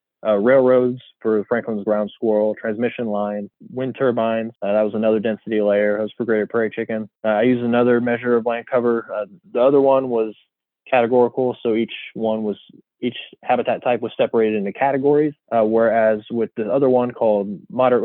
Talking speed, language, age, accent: 185 wpm, English, 20-39, American